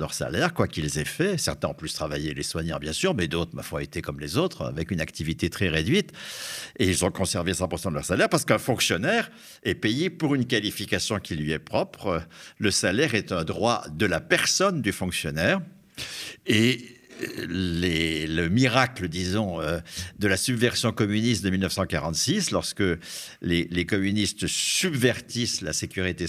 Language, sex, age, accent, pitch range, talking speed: French, male, 60-79, French, 85-115 Hz, 175 wpm